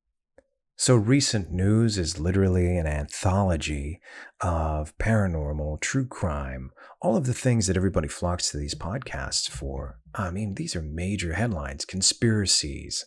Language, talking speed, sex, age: English, 135 wpm, male, 40-59